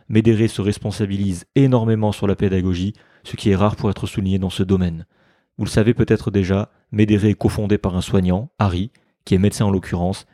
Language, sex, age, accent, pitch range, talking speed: French, male, 30-49, French, 95-110 Hz, 195 wpm